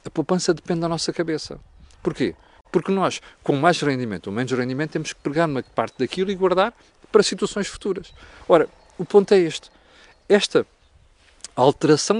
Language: Portuguese